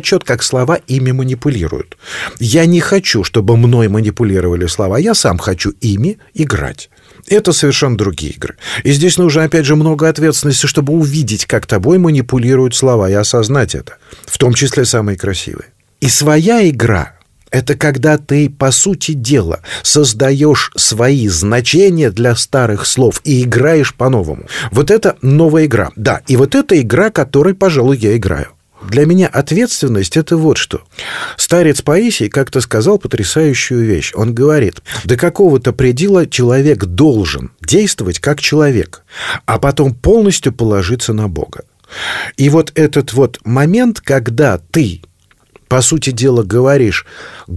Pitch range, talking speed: 115-155 Hz, 140 wpm